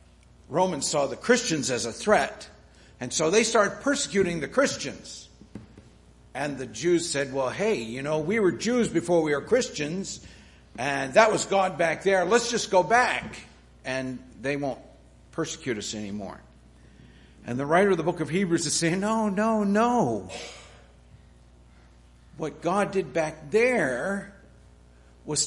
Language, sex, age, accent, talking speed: English, male, 60-79, American, 150 wpm